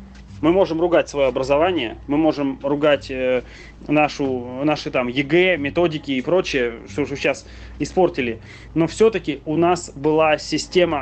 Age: 30-49